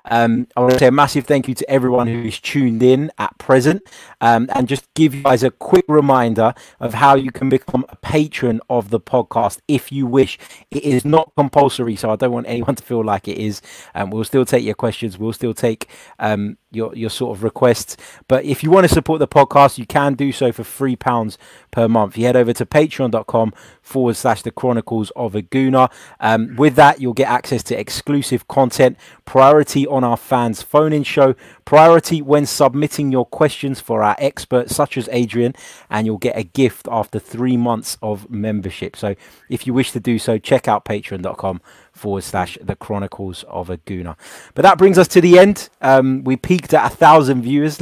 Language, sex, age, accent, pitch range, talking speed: English, male, 20-39, British, 115-140 Hz, 200 wpm